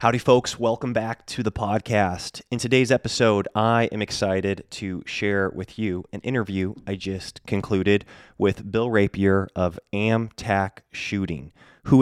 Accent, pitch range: American, 95-120 Hz